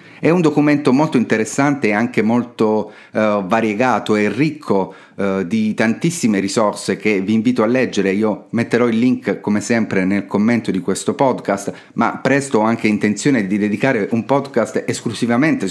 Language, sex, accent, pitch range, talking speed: Italian, male, native, 105-130 Hz, 155 wpm